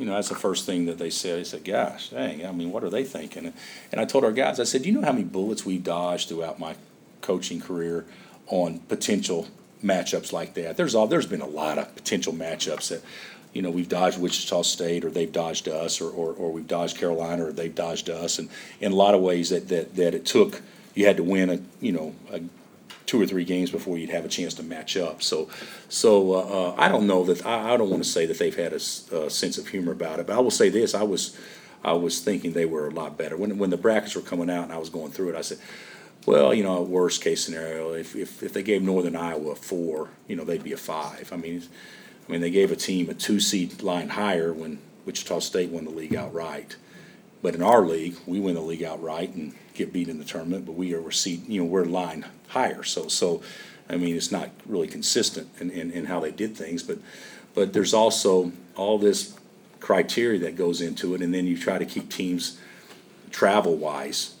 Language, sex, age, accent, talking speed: English, male, 40-59, American, 240 wpm